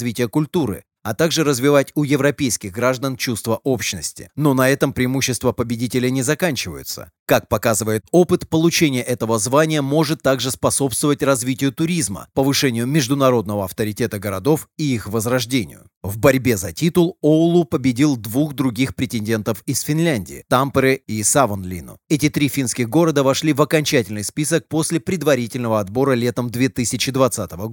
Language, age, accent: Russian, 30-49, native